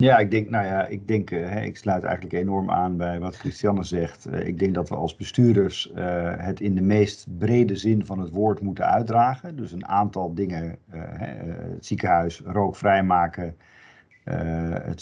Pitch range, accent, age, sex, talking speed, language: 90-105 Hz, Dutch, 50-69, male, 170 wpm, Dutch